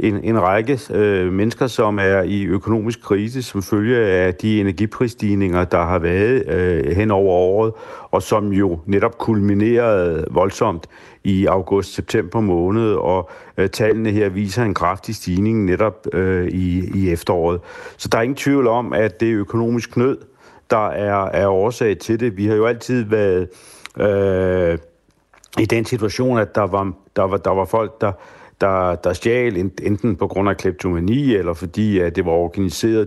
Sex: male